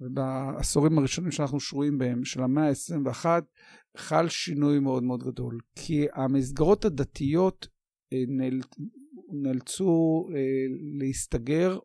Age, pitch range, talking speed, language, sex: 50-69, 130-155 Hz, 100 wpm, Hebrew, male